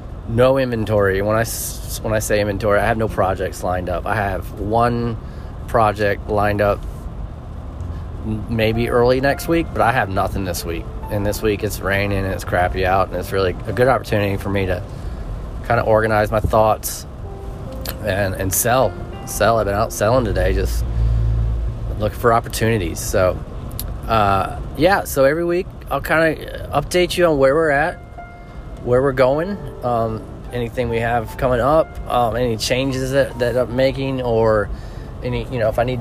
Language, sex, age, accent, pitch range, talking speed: English, male, 20-39, American, 100-125 Hz, 175 wpm